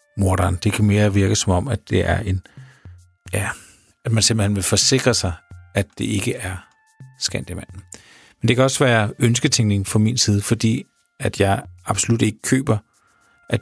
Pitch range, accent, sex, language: 95-115 Hz, native, male, Danish